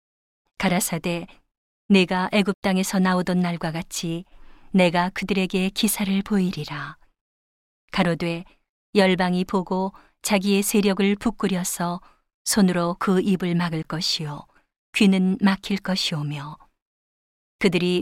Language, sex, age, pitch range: Korean, female, 40-59, 175-200 Hz